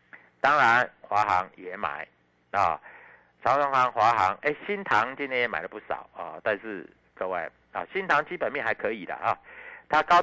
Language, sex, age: Chinese, male, 60-79